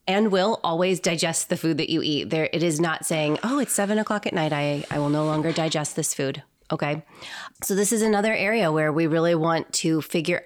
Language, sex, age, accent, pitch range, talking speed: English, female, 20-39, American, 150-180 Hz, 230 wpm